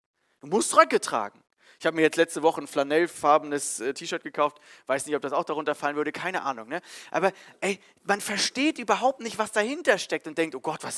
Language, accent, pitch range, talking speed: German, German, 150-210 Hz, 215 wpm